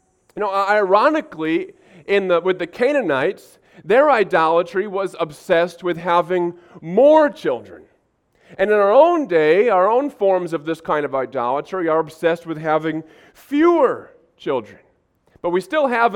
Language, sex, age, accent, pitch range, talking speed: English, male, 40-59, American, 145-195 Hz, 145 wpm